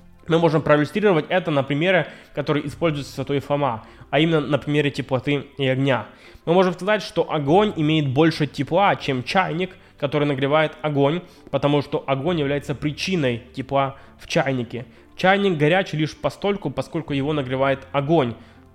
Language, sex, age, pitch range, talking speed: Russian, male, 20-39, 135-165 Hz, 145 wpm